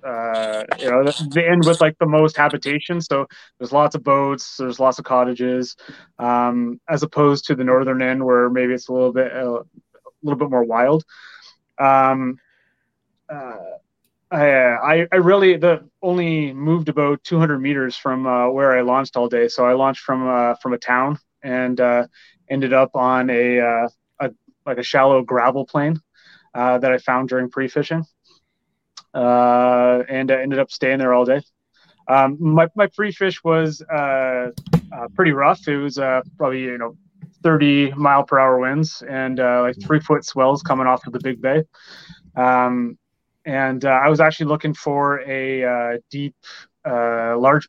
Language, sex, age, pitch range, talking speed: English, male, 20-39, 125-150 Hz, 175 wpm